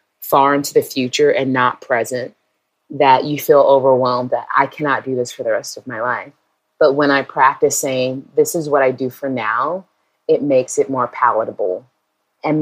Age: 30-49